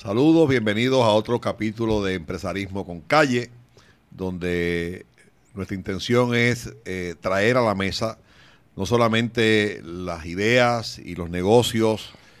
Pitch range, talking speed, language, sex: 95-120 Hz, 120 wpm, Spanish, male